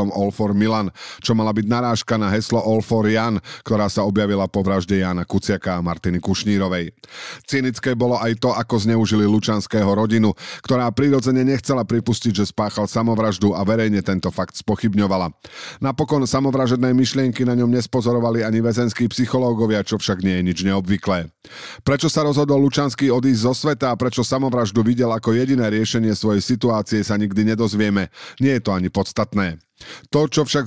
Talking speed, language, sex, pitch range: 165 wpm, Slovak, male, 105-125 Hz